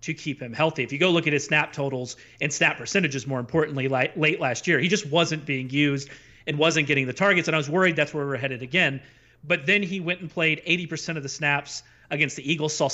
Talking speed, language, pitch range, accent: 255 wpm, English, 135-165 Hz, American